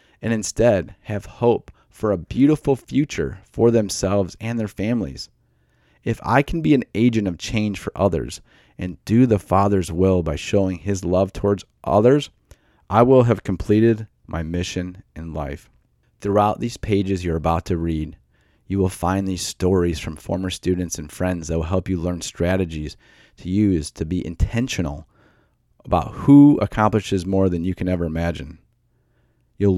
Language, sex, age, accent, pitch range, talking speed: English, male, 30-49, American, 85-105 Hz, 165 wpm